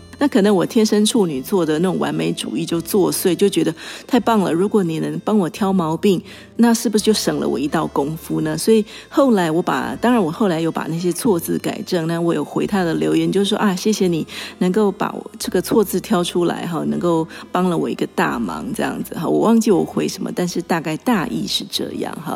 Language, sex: Chinese, female